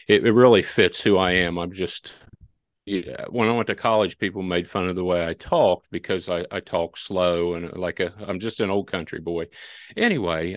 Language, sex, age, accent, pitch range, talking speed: English, male, 50-69, American, 85-105 Hz, 215 wpm